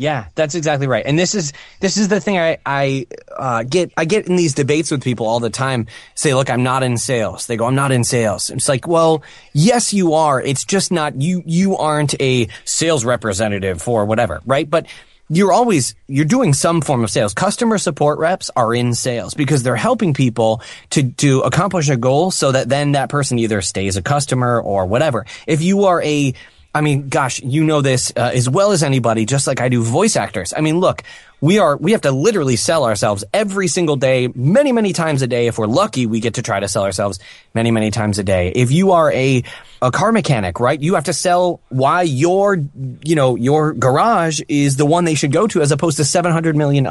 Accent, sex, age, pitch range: American, male, 20-39, 120-165 Hz